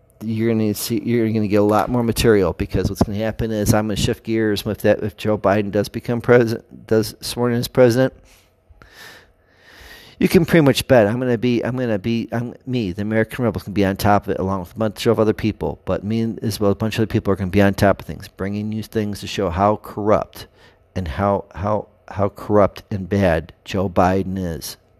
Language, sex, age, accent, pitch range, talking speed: English, male, 50-69, American, 95-110 Hz, 225 wpm